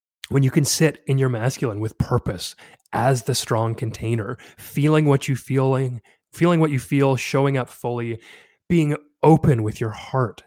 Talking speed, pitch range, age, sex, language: 165 wpm, 110-135 Hz, 20-39, male, English